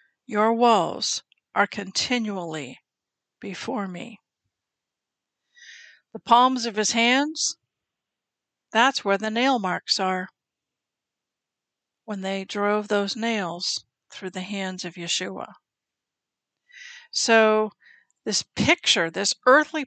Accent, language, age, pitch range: American, English, 50-69, 195-245 Hz